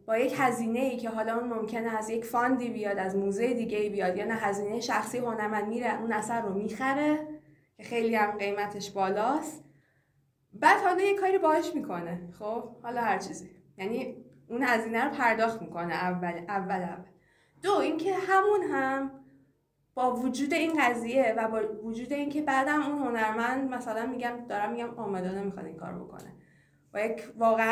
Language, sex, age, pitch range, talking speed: Persian, female, 20-39, 205-245 Hz, 165 wpm